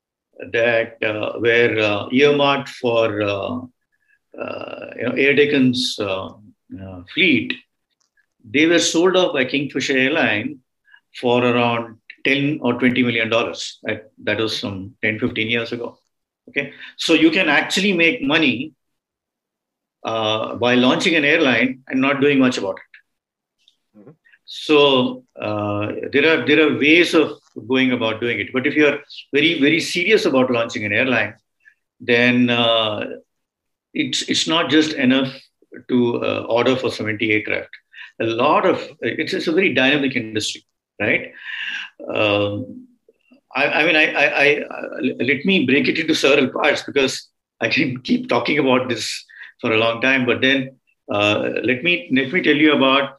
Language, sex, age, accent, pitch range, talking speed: English, male, 50-69, Indian, 115-145 Hz, 150 wpm